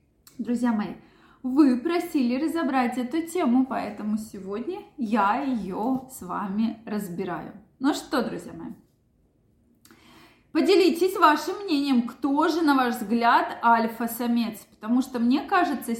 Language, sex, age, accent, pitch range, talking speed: Russian, female, 20-39, native, 225-295 Hz, 115 wpm